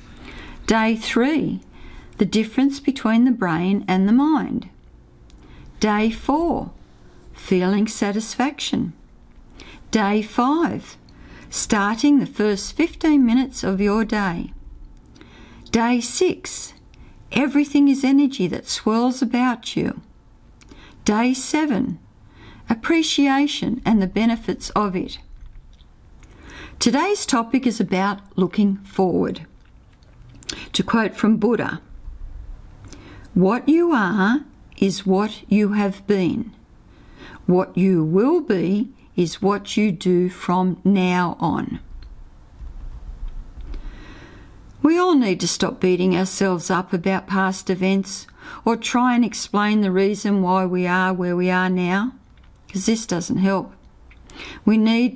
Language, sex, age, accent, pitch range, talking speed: English, female, 50-69, Australian, 185-240 Hz, 110 wpm